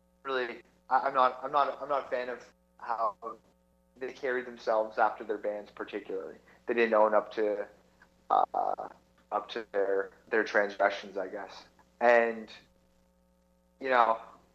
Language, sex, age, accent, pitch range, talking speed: English, male, 30-49, American, 95-120 Hz, 145 wpm